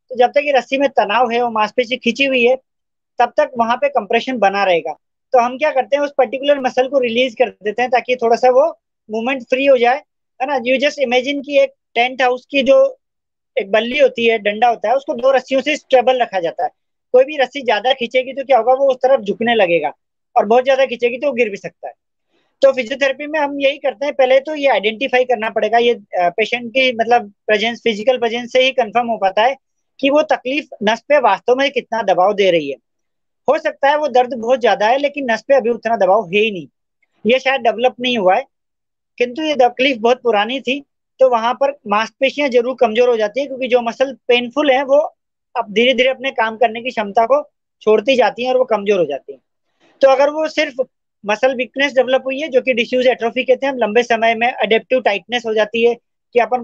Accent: native